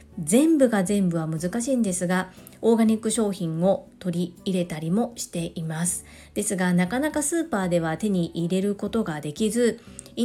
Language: Japanese